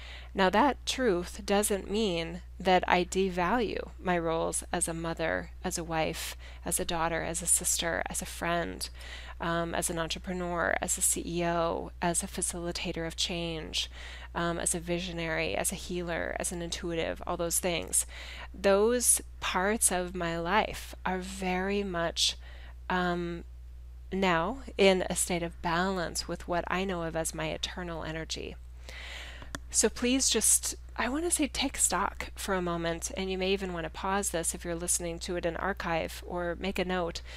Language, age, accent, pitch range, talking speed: English, 20-39, American, 165-190 Hz, 170 wpm